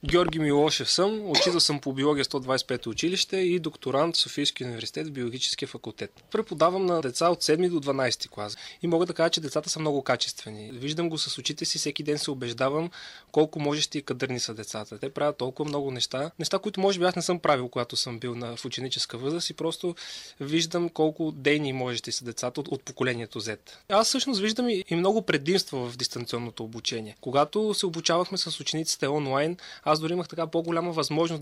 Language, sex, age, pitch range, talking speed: Bulgarian, male, 20-39, 135-170 Hz, 195 wpm